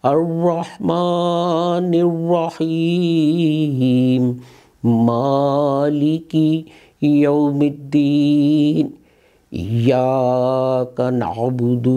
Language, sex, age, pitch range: English, male, 50-69, 140-165 Hz